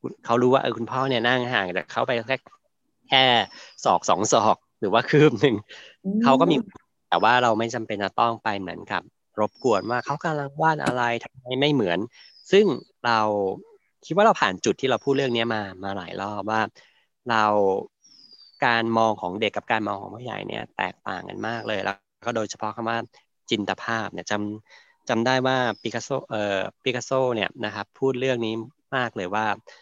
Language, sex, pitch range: Thai, male, 105-125 Hz